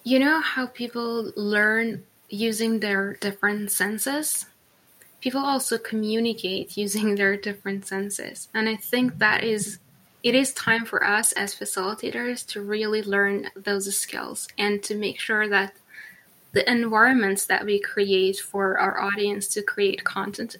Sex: female